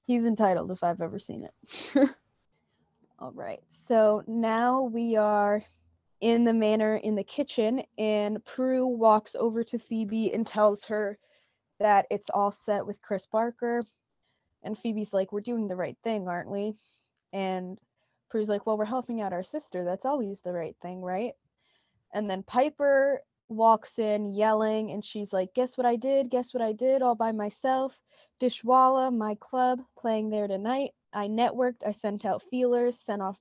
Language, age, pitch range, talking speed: English, 20-39, 195-235 Hz, 170 wpm